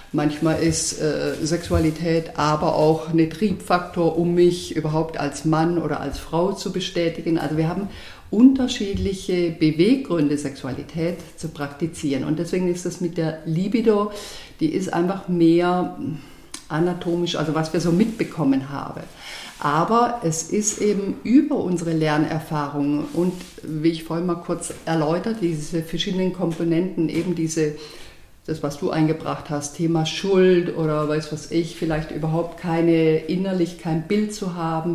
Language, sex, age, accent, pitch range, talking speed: German, female, 50-69, German, 155-180 Hz, 140 wpm